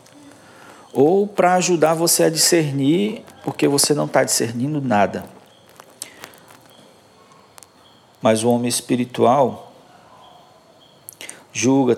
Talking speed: 85 wpm